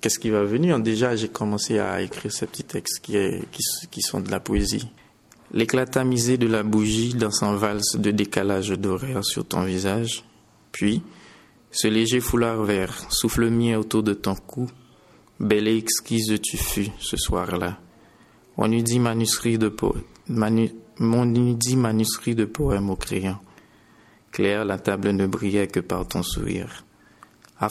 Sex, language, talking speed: male, French, 160 wpm